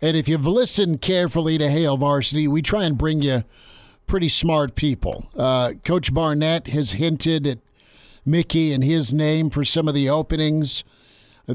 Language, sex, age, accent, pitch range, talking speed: English, male, 50-69, American, 140-160 Hz, 165 wpm